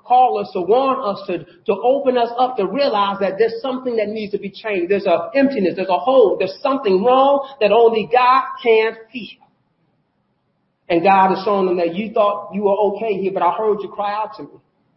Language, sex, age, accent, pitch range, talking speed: English, male, 40-59, American, 190-255 Hz, 215 wpm